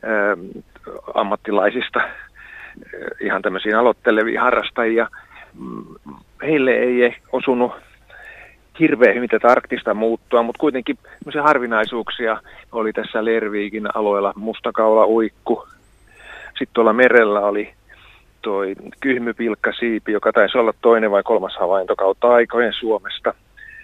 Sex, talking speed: male, 100 wpm